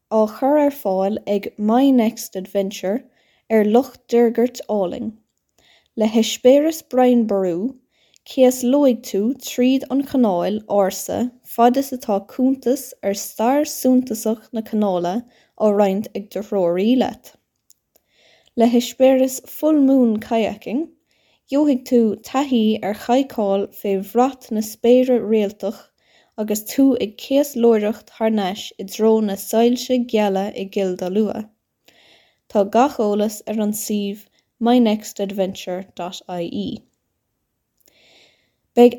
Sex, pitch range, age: female, 205-255 Hz, 10-29